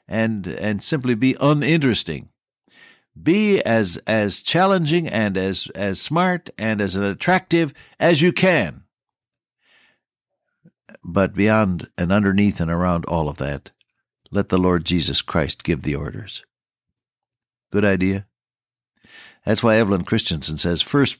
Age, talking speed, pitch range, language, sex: 60-79, 125 wpm, 90-125 Hz, English, male